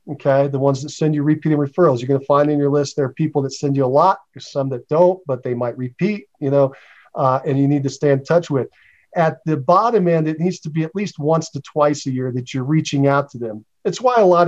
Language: English